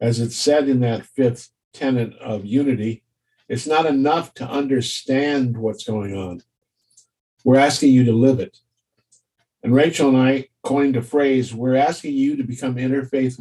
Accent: American